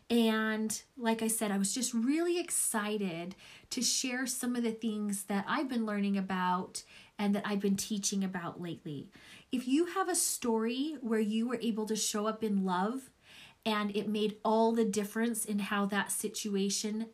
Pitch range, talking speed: 195-245 Hz, 180 wpm